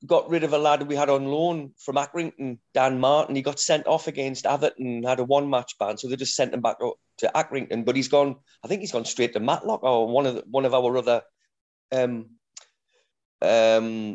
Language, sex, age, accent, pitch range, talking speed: English, male, 30-49, British, 125-145 Hz, 220 wpm